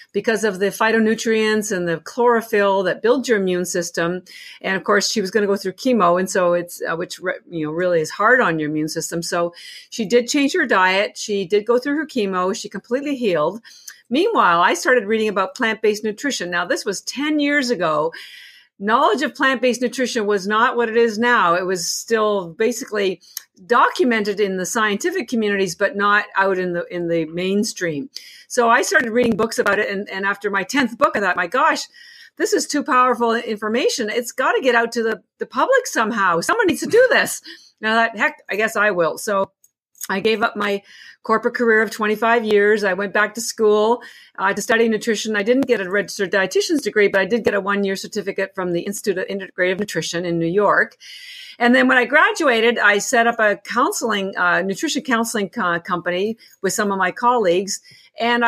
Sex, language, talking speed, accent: female, English, 205 wpm, American